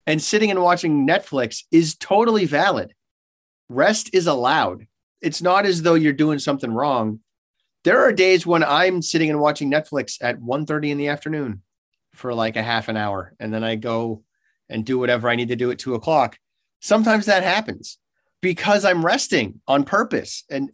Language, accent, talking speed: English, American, 180 wpm